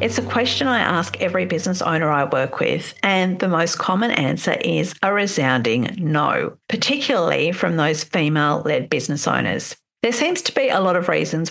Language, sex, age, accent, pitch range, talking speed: English, female, 50-69, Australian, 165-240 Hz, 175 wpm